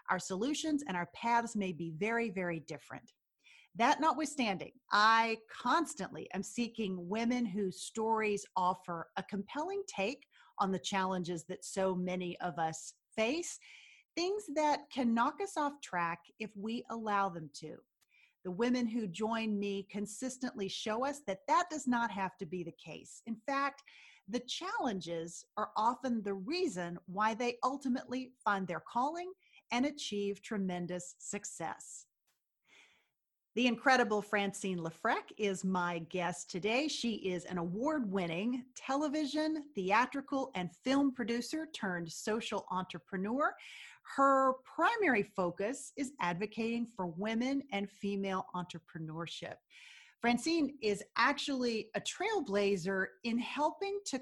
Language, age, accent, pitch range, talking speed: English, 40-59, American, 185-265 Hz, 130 wpm